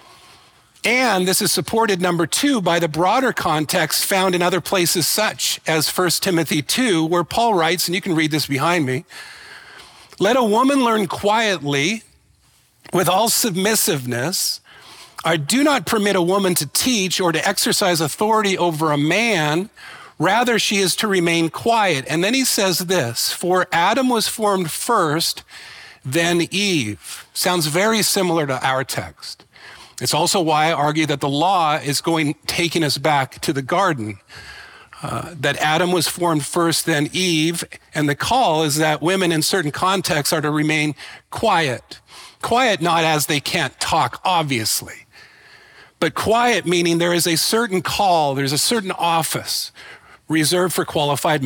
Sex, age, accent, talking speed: male, 50-69, American, 155 wpm